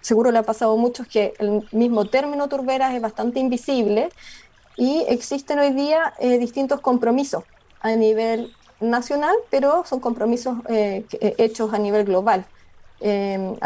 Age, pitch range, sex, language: 20-39, 225-285 Hz, female, Spanish